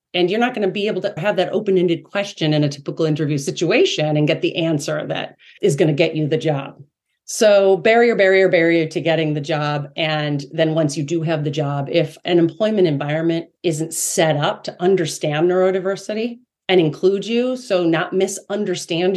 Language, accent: English, American